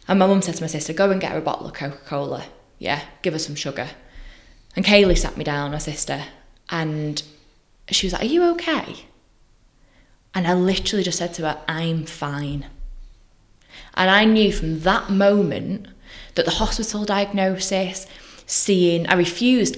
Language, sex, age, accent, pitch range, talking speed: English, female, 10-29, British, 155-210 Hz, 175 wpm